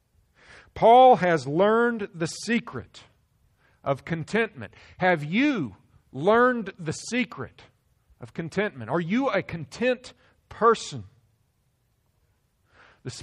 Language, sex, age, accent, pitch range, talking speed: English, male, 50-69, American, 115-165 Hz, 90 wpm